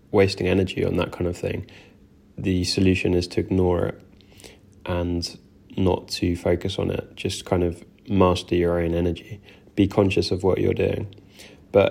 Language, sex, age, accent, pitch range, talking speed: English, male, 10-29, British, 90-100 Hz, 165 wpm